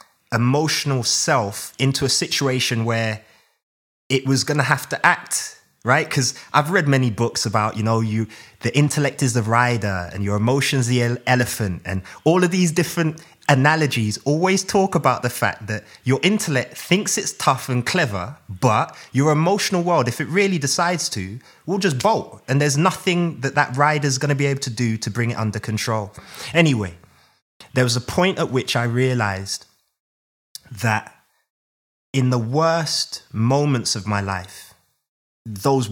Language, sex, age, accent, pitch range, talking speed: English, male, 20-39, British, 115-155 Hz, 165 wpm